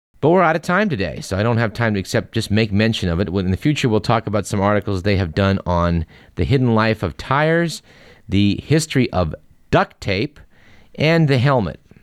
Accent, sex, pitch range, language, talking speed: American, male, 90-120 Hz, English, 215 wpm